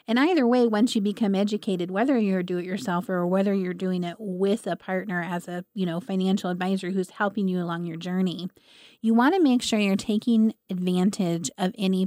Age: 30-49